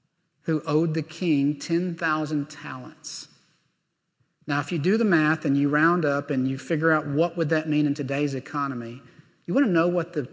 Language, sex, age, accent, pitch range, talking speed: English, male, 40-59, American, 140-165 Hz, 190 wpm